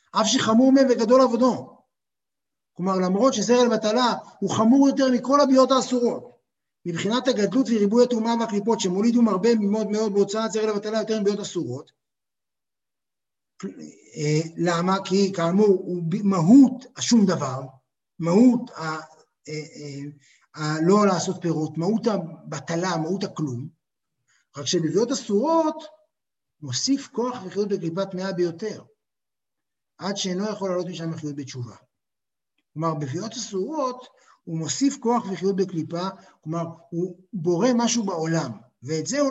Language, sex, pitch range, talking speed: Hebrew, male, 165-235 Hz, 120 wpm